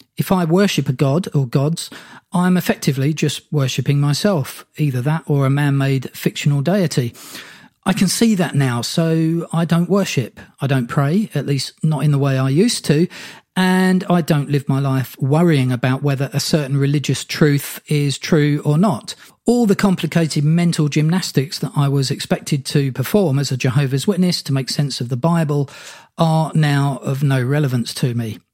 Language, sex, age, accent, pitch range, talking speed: English, male, 40-59, British, 140-180 Hz, 180 wpm